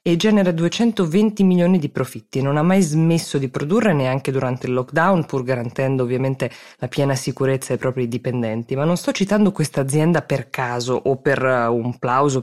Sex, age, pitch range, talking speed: female, 20-39, 130-180 Hz, 185 wpm